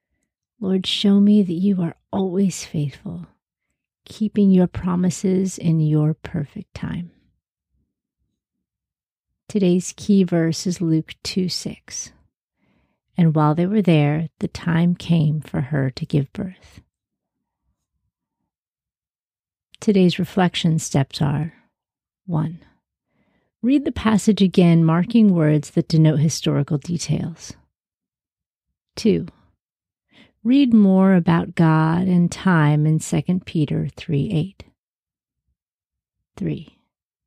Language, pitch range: English, 155-195 Hz